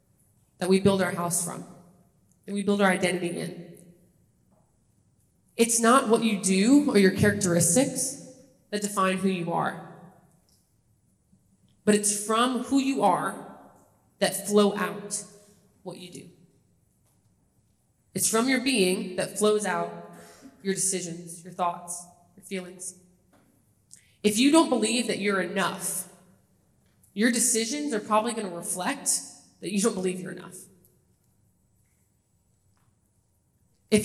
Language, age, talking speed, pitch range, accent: English, 20-39, 125 wpm, 170-205 Hz, American